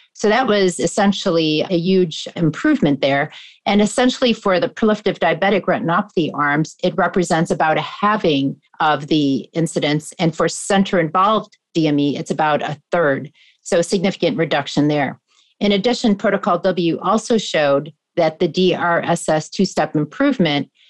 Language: English